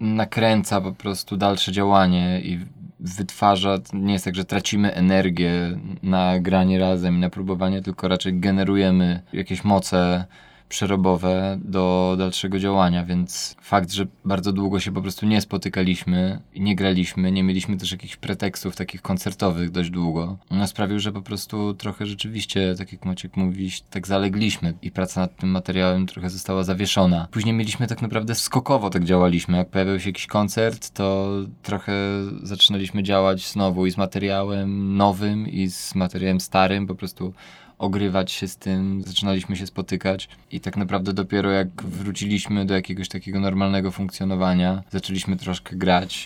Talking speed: 155 wpm